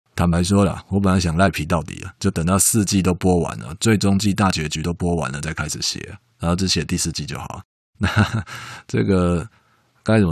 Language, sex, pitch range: Chinese, male, 85-110 Hz